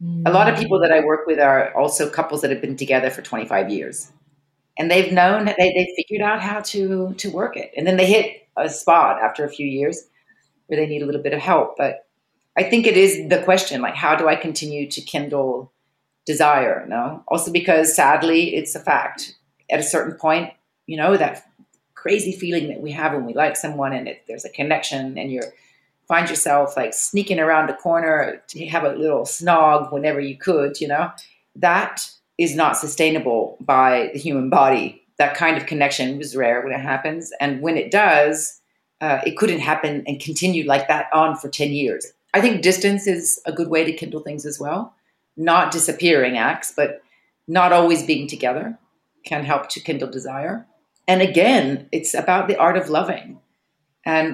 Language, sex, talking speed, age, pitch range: English, female, 195 wpm, 40-59, 145-180 Hz